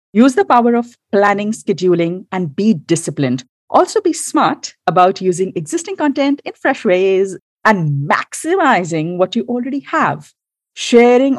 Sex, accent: female, Indian